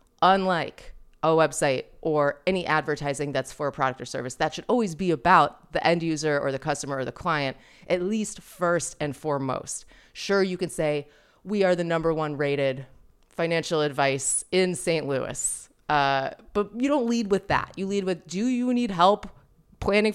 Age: 30-49